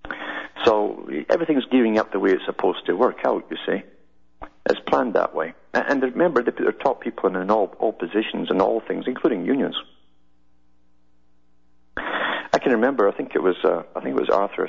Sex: male